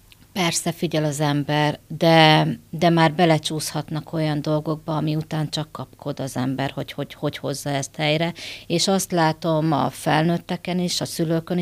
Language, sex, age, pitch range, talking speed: Hungarian, female, 30-49, 155-180 Hz, 155 wpm